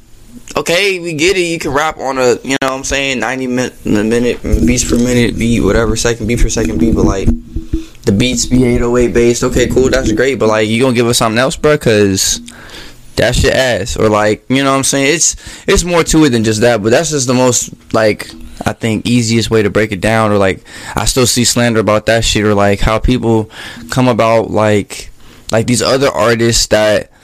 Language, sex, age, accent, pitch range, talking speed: English, male, 10-29, American, 105-125 Hz, 225 wpm